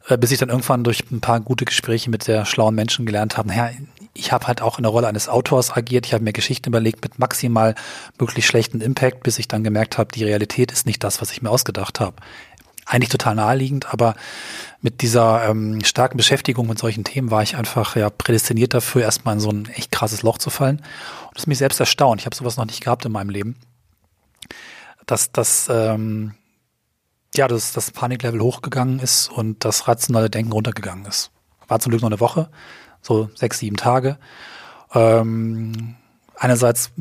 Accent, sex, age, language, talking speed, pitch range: German, male, 30-49, German, 195 wpm, 110-125 Hz